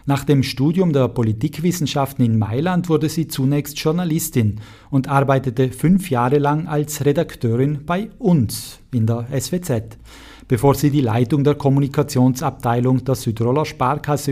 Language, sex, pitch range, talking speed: German, male, 115-155 Hz, 135 wpm